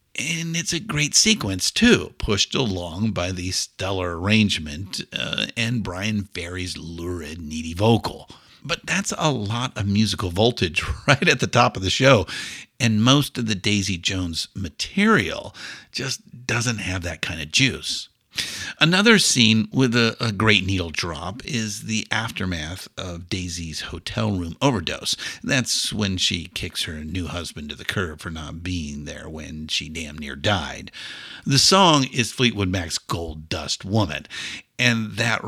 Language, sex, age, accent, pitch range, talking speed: English, male, 50-69, American, 90-120 Hz, 155 wpm